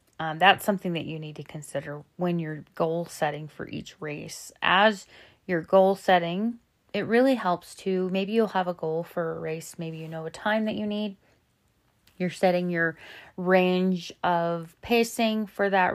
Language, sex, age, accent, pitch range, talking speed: English, female, 30-49, American, 160-190 Hz, 175 wpm